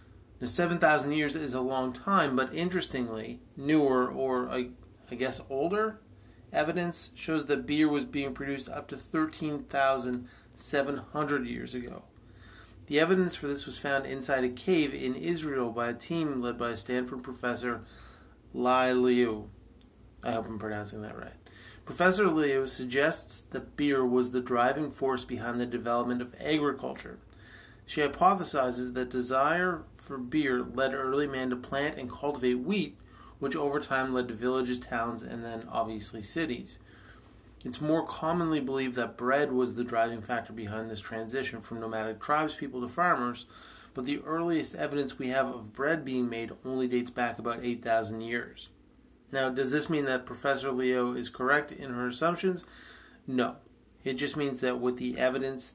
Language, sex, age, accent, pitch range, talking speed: English, male, 30-49, American, 120-140 Hz, 155 wpm